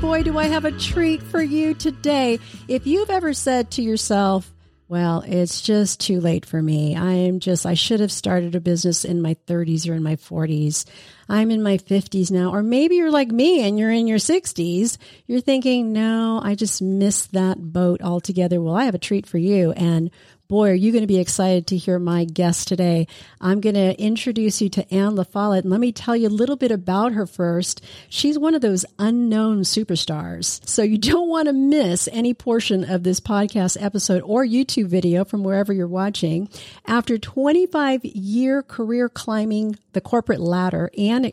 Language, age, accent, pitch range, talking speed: English, 40-59, American, 180-230 Hz, 195 wpm